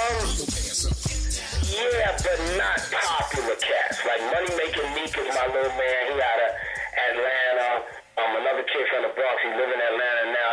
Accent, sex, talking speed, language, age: American, male, 160 wpm, English, 40-59